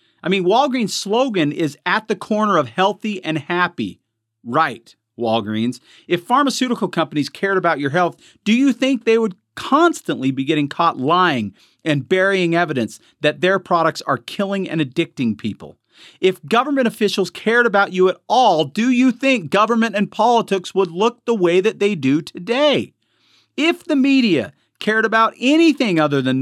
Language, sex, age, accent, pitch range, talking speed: English, male, 40-59, American, 135-210 Hz, 165 wpm